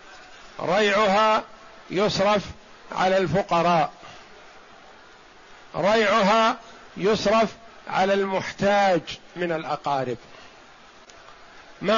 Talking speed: 55 wpm